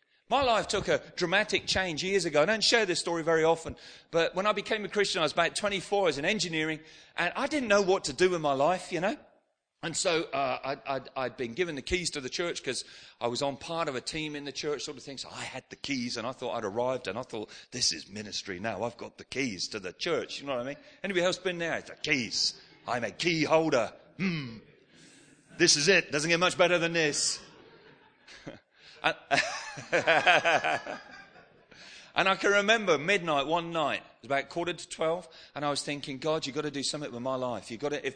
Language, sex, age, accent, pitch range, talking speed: English, male, 40-59, British, 130-175 Hz, 235 wpm